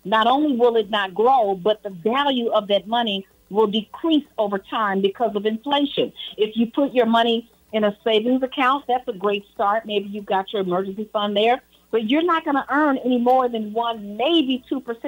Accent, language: American, English